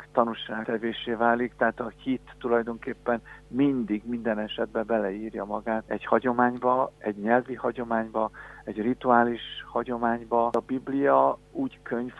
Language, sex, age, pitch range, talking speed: Hungarian, male, 50-69, 115-130 Hz, 115 wpm